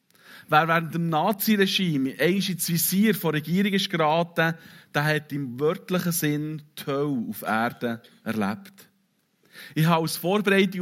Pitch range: 145-185 Hz